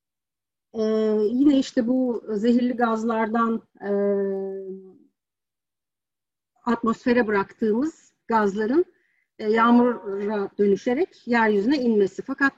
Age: 50-69